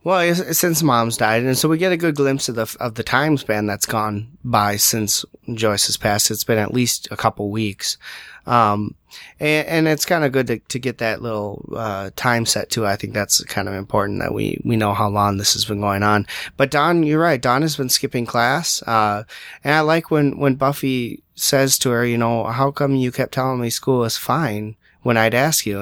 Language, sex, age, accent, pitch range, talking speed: English, male, 30-49, American, 110-135 Hz, 230 wpm